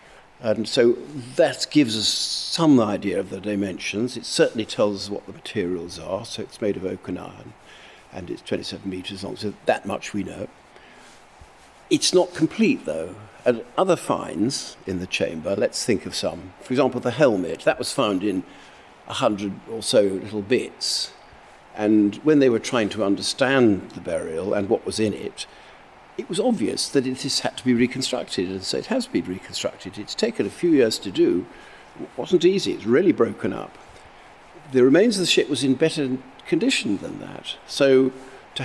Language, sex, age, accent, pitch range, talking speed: English, male, 50-69, British, 105-175 Hz, 185 wpm